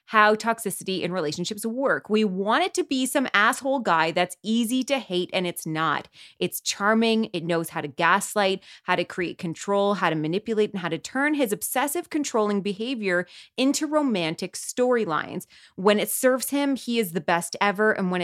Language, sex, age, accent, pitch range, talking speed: English, female, 20-39, American, 185-240 Hz, 185 wpm